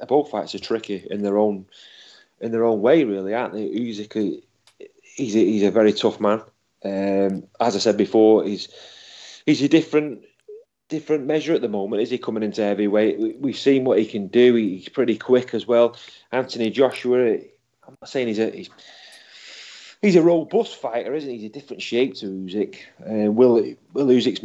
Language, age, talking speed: English, 30-49, 185 wpm